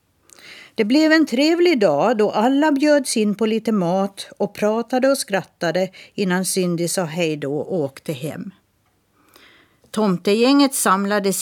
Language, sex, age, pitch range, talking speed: Swedish, female, 50-69, 165-245 Hz, 135 wpm